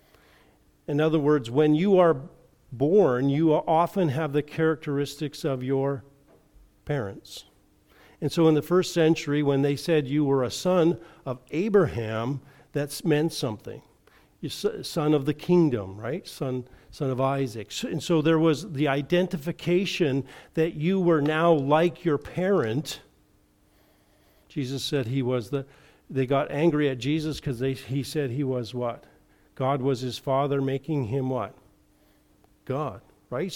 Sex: male